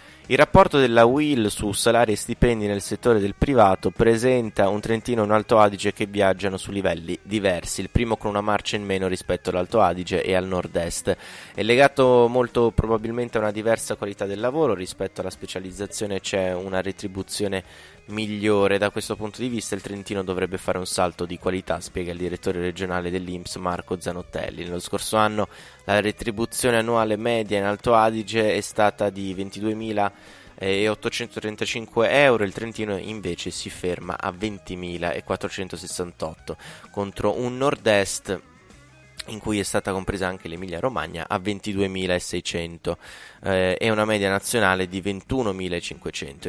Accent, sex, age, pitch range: native, male, 20-39, 95-110 Hz